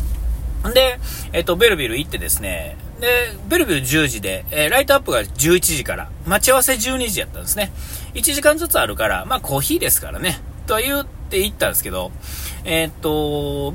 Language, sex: Japanese, male